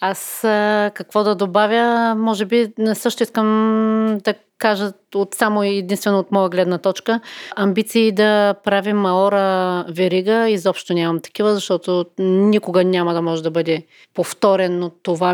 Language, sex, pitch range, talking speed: Bulgarian, female, 180-210 Hz, 140 wpm